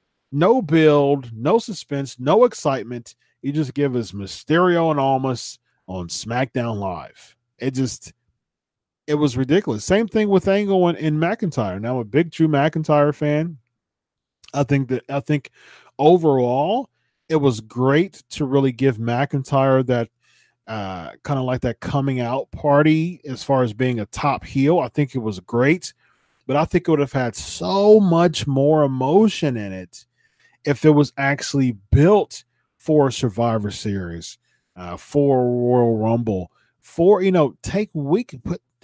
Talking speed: 150 wpm